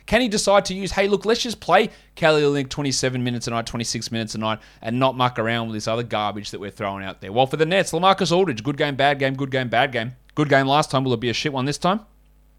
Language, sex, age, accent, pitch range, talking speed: English, male, 20-39, Australian, 115-155 Hz, 280 wpm